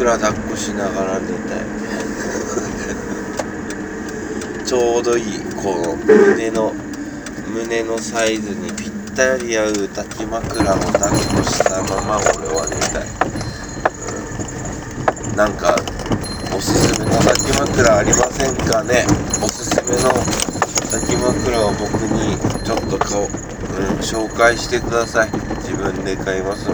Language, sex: Japanese, male